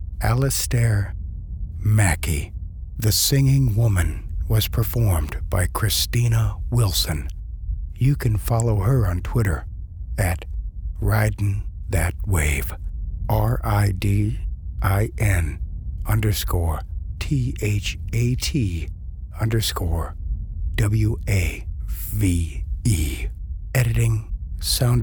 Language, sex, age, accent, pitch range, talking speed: English, male, 60-79, American, 80-110 Hz, 65 wpm